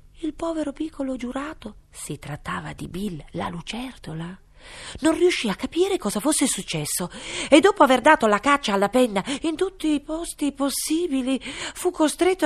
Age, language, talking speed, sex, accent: 40-59, Italian, 155 wpm, female, native